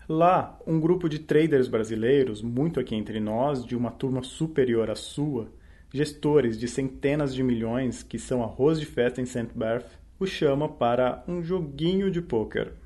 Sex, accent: male, Brazilian